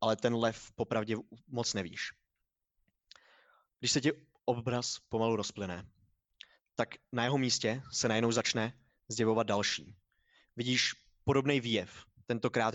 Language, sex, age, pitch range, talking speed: Czech, male, 20-39, 100-120 Hz, 120 wpm